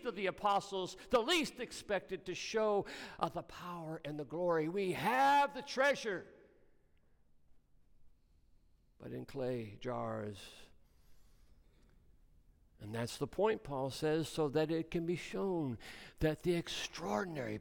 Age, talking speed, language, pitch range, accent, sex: 60-79, 125 wpm, English, 120-175 Hz, American, male